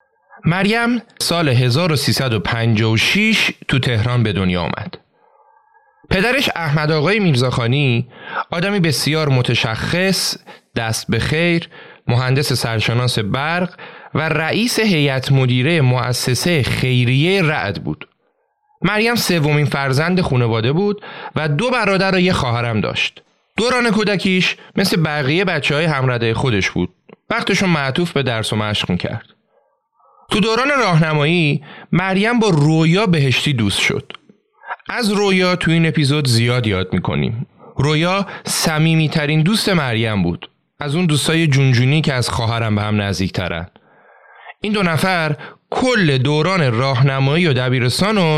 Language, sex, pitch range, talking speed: Persian, male, 125-185 Hz, 125 wpm